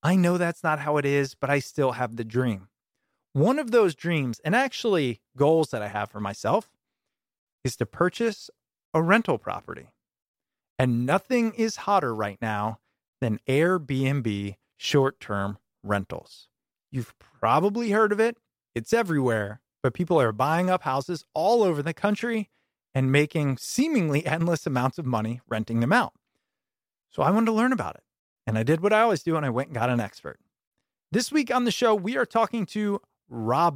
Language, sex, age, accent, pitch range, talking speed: English, male, 30-49, American, 120-190 Hz, 175 wpm